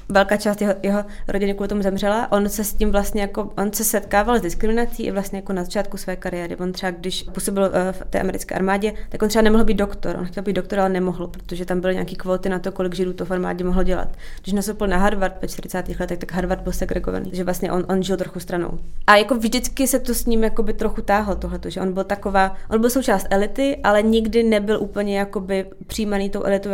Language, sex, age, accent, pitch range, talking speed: Czech, female, 20-39, native, 195-225 Hz, 230 wpm